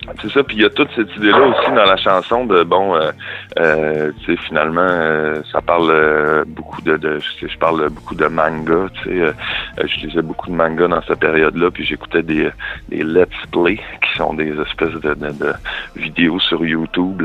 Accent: French